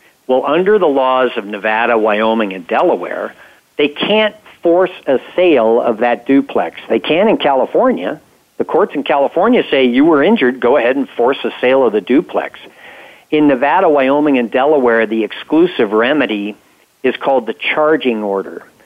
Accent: American